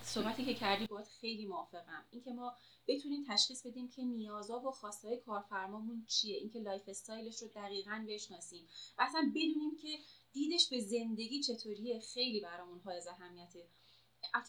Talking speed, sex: 150 wpm, female